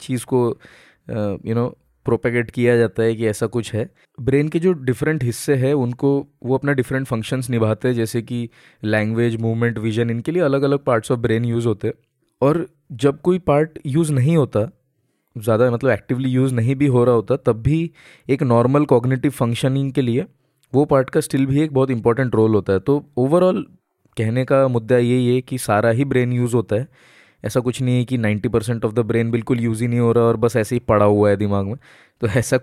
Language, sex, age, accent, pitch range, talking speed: Hindi, male, 20-39, native, 115-135 Hz, 215 wpm